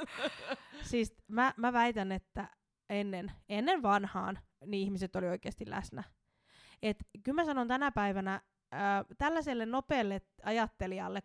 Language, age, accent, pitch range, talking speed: Finnish, 20-39, native, 195-225 Hz, 125 wpm